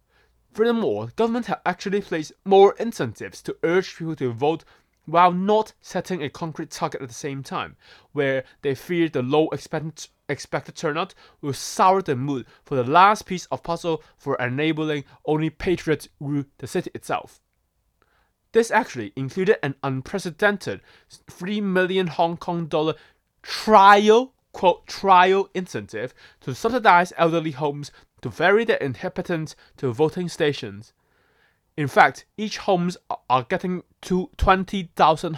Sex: male